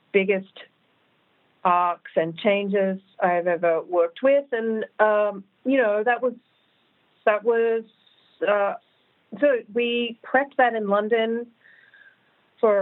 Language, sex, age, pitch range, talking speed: English, female, 40-59, 190-225 Hz, 110 wpm